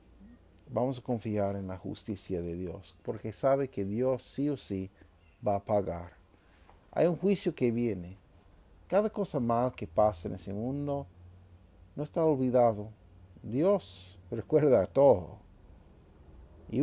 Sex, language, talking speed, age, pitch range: male, Spanish, 140 wpm, 50-69, 95-135 Hz